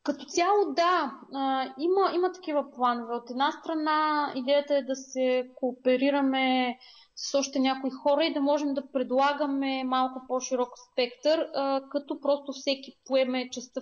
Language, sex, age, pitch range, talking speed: Bulgarian, female, 20-39, 235-280 Hz, 150 wpm